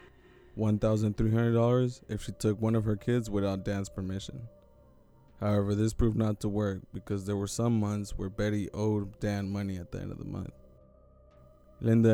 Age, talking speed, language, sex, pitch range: 20-39, 165 wpm, English, male, 100-110 Hz